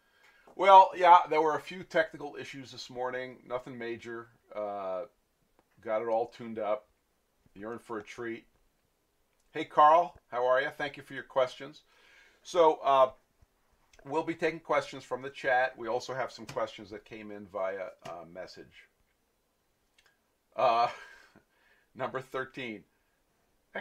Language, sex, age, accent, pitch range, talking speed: English, male, 50-69, American, 110-140 Hz, 140 wpm